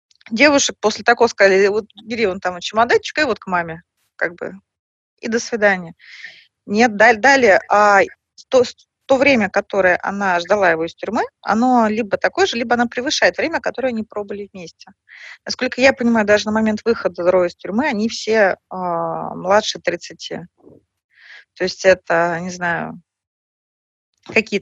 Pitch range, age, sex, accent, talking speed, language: 185-240 Hz, 30-49, female, native, 155 wpm, Russian